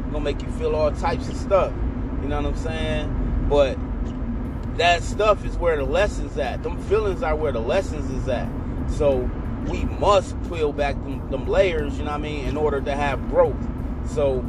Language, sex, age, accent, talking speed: English, male, 30-49, American, 200 wpm